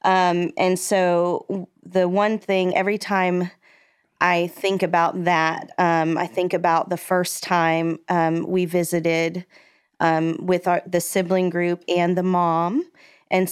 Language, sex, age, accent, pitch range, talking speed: English, female, 20-39, American, 175-195 Hz, 140 wpm